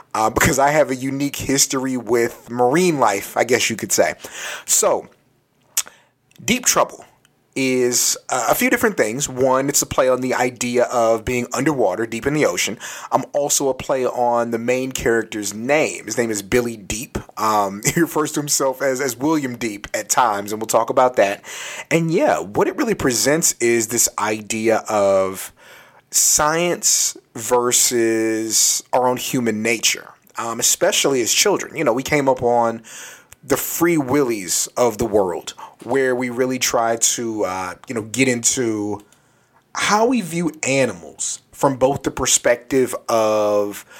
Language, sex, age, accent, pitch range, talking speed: English, male, 30-49, American, 115-135 Hz, 160 wpm